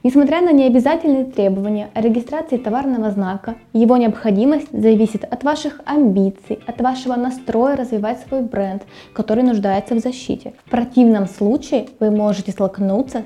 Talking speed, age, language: 135 wpm, 20-39, Russian